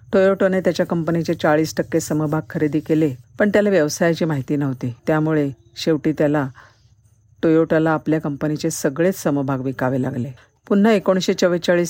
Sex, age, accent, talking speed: female, 50-69, native, 125 wpm